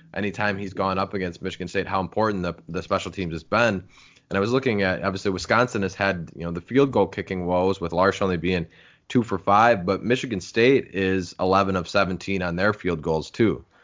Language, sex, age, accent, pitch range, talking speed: English, male, 20-39, American, 85-100 Hz, 215 wpm